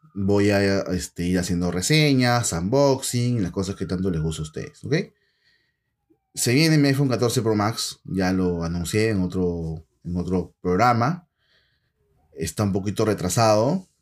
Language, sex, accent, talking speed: Spanish, male, Venezuelan, 150 wpm